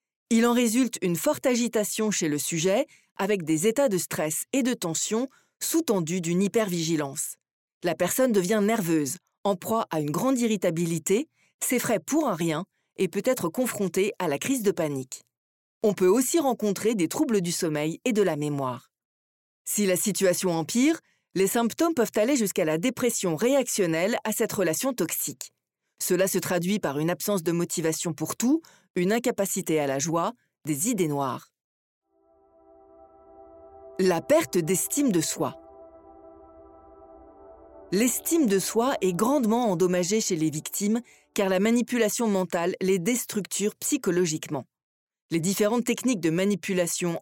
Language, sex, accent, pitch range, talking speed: French, female, French, 165-230 Hz, 145 wpm